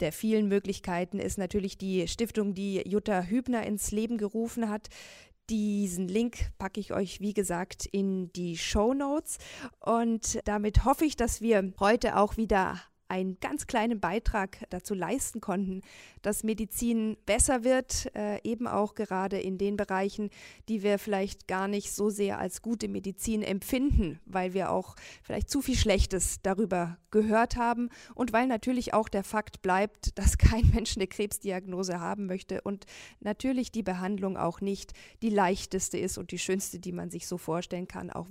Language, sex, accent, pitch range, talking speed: German, female, German, 190-225 Hz, 165 wpm